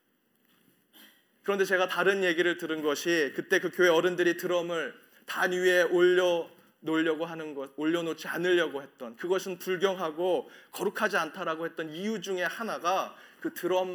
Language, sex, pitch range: Korean, male, 165-220 Hz